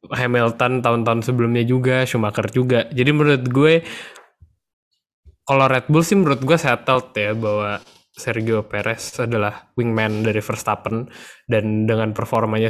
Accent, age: native, 10-29